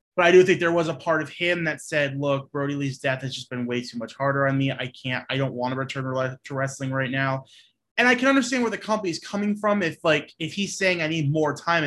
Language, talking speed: English, 275 wpm